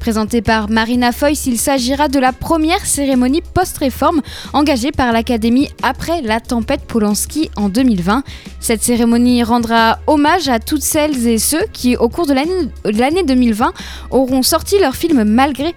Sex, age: female, 10-29